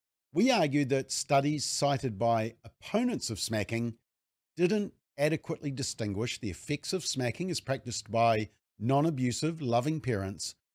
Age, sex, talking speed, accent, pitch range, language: 50-69, male, 125 wpm, Australian, 110-150 Hz, English